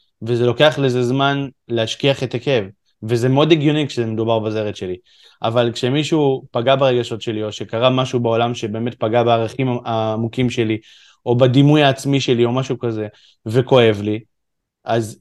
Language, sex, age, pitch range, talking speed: Hebrew, male, 20-39, 115-140 Hz, 145 wpm